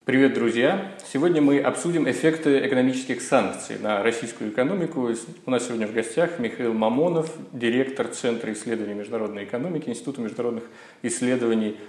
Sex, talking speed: male, 130 wpm